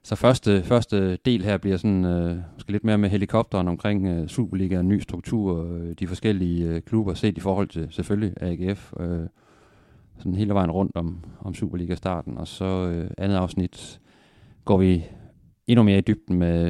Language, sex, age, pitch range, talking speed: Danish, male, 30-49, 85-100 Hz, 175 wpm